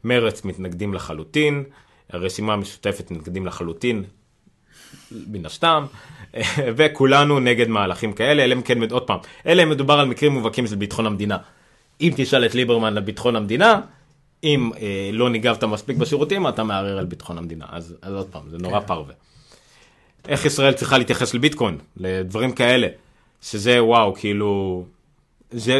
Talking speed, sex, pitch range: 155 wpm, male, 100-140 Hz